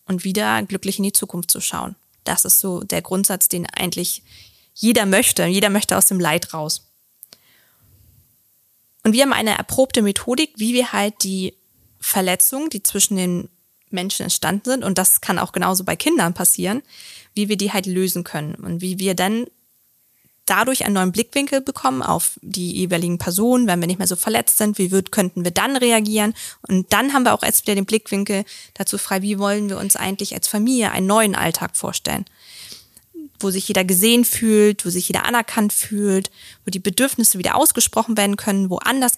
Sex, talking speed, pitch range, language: female, 185 wpm, 185-225 Hz, German